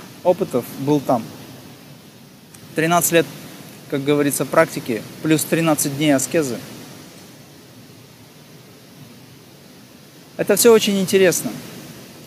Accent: native